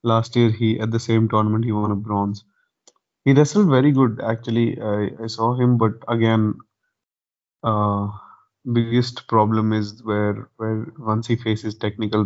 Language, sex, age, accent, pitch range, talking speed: Hindi, male, 20-39, native, 105-115 Hz, 155 wpm